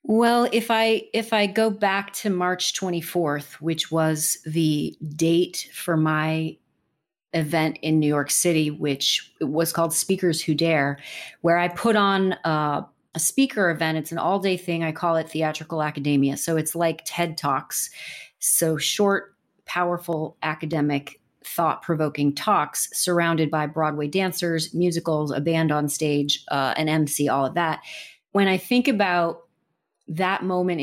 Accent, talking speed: American, 150 wpm